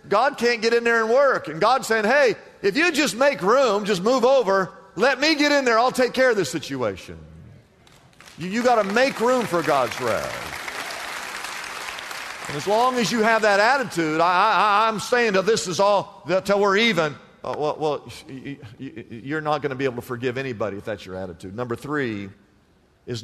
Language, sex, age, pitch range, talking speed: English, male, 50-69, 130-210 Hz, 200 wpm